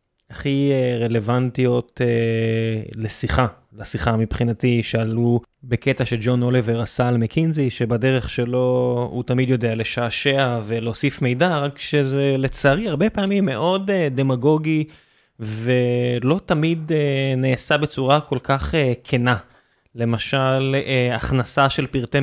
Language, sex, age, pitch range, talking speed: Hebrew, male, 20-39, 125-150 Hz, 105 wpm